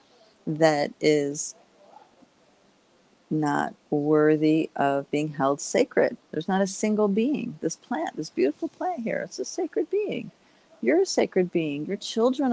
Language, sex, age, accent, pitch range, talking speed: English, female, 50-69, American, 155-225 Hz, 140 wpm